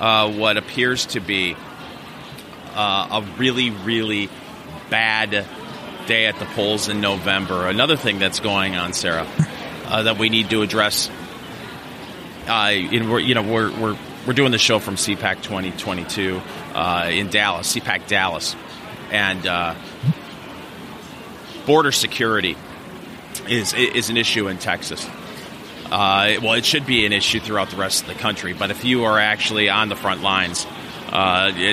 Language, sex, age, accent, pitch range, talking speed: English, male, 30-49, American, 95-120 Hz, 155 wpm